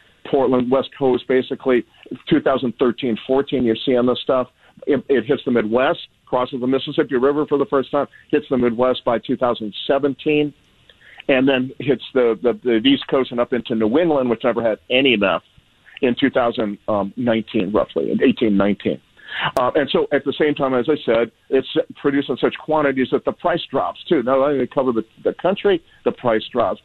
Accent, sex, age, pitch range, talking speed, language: American, male, 50-69, 120-145 Hz, 180 wpm, English